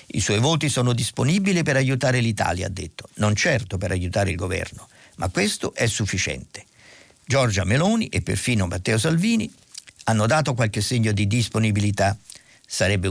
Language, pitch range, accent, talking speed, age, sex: Italian, 100-135 Hz, native, 150 wpm, 50-69, male